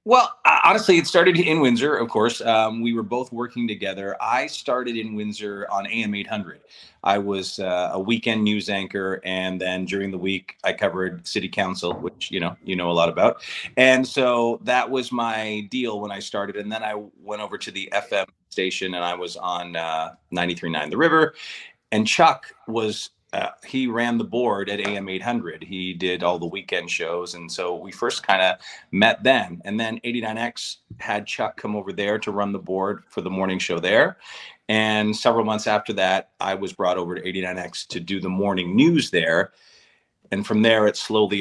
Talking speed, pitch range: 195 wpm, 95-115 Hz